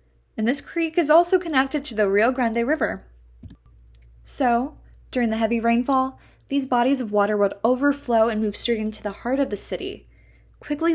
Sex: female